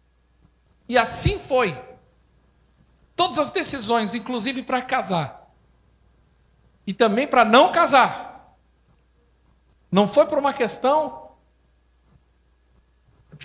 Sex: male